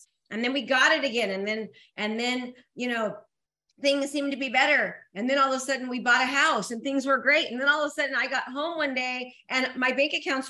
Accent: American